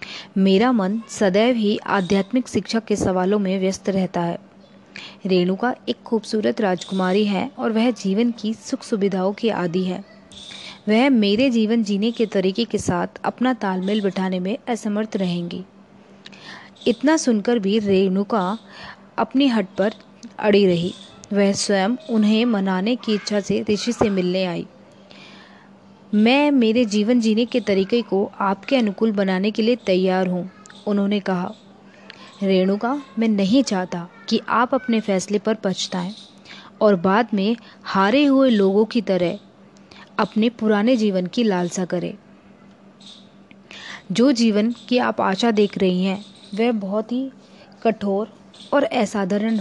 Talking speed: 135 wpm